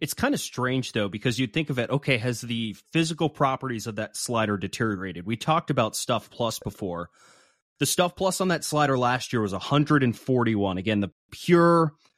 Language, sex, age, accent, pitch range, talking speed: English, male, 30-49, American, 105-135 Hz, 185 wpm